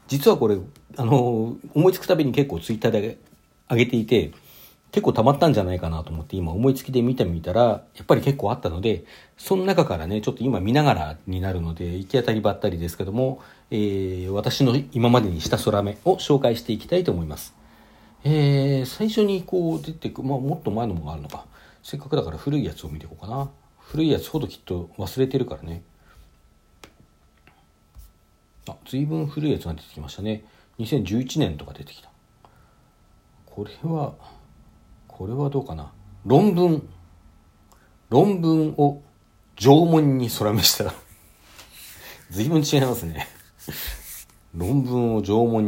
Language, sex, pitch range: Japanese, male, 85-135 Hz